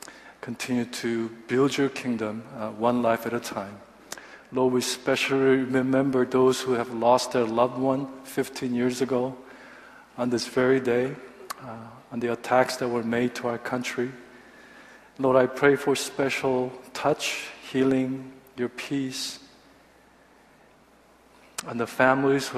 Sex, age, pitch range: male, 50-69, 120-130 Hz